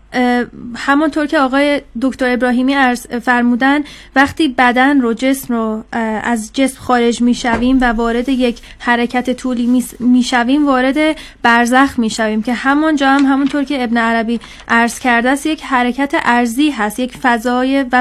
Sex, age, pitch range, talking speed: female, 30-49, 235-270 Hz, 150 wpm